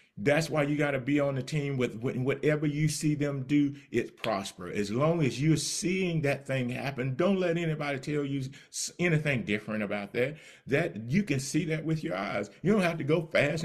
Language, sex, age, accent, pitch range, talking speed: English, male, 40-59, American, 120-155 Hz, 210 wpm